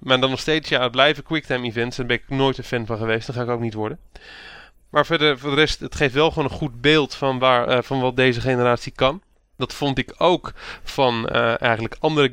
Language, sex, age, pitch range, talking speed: Dutch, male, 20-39, 120-135 Hz, 250 wpm